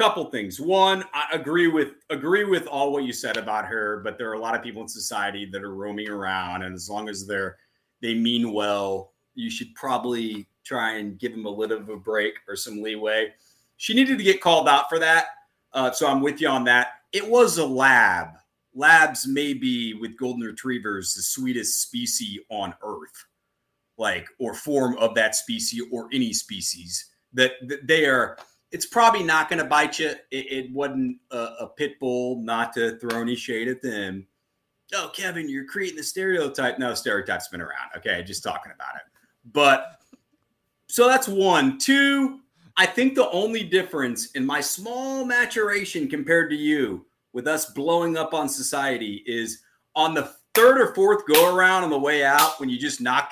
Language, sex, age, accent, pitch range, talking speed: English, male, 30-49, American, 115-190 Hz, 190 wpm